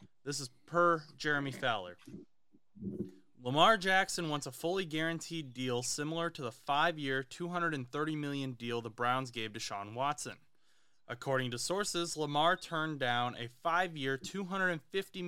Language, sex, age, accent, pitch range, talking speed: English, male, 20-39, American, 125-175 Hz, 135 wpm